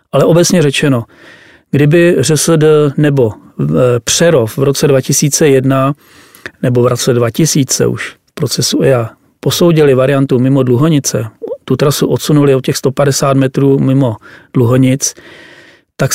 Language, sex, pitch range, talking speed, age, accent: Czech, male, 130-150 Hz, 120 wpm, 40-59, native